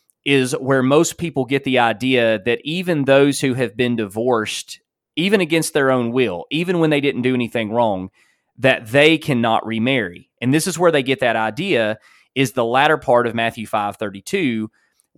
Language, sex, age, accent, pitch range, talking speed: English, male, 30-49, American, 115-150 Hz, 180 wpm